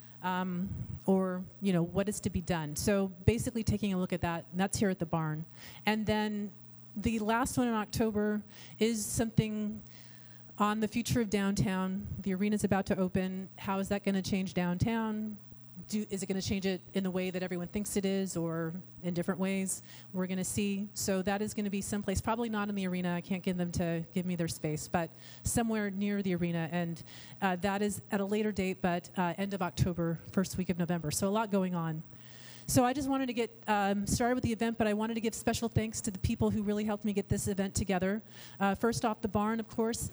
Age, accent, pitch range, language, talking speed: 30-49, American, 180-215 Hz, English, 230 wpm